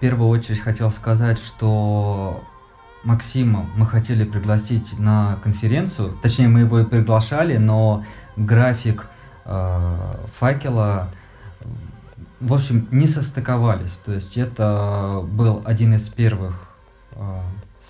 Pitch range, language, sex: 105-115 Hz, Russian, male